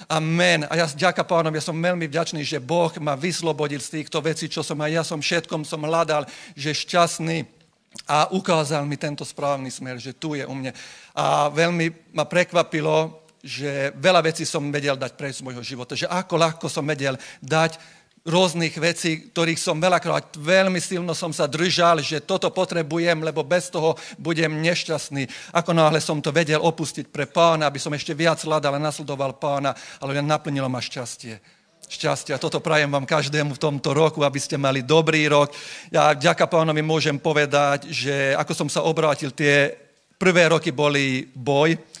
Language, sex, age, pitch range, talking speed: Slovak, male, 50-69, 145-165 Hz, 175 wpm